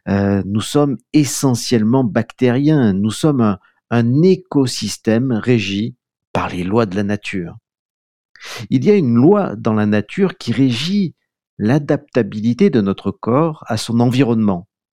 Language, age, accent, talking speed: French, 50-69, French, 135 wpm